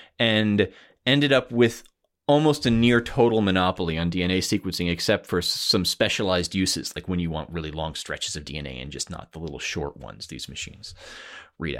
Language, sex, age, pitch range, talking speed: English, male, 30-49, 95-125 Hz, 185 wpm